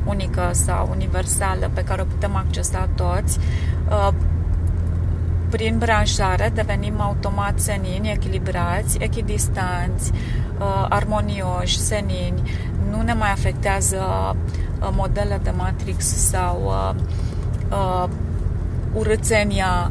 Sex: female